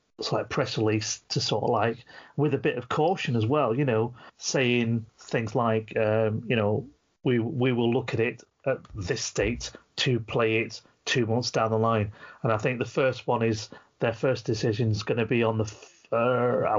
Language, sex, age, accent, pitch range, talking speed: English, male, 30-49, British, 110-135 Hz, 200 wpm